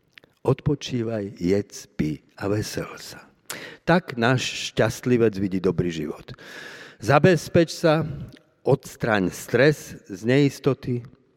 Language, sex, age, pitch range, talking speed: Slovak, male, 50-69, 105-145 Hz, 95 wpm